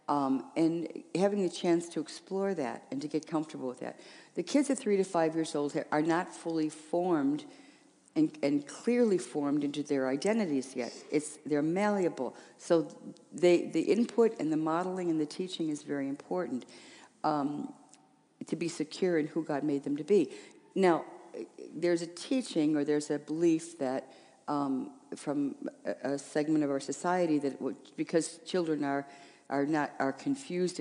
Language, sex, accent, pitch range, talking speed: English, female, American, 140-180 Hz, 170 wpm